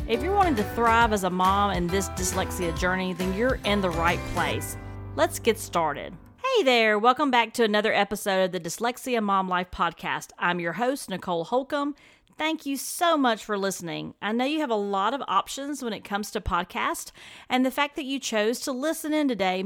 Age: 40-59